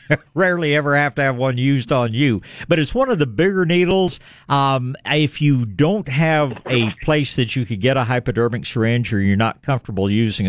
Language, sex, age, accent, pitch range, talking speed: English, male, 50-69, American, 110-145 Hz, 200 wpm